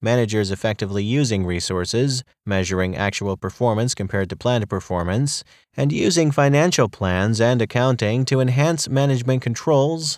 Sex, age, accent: male, 30-49, American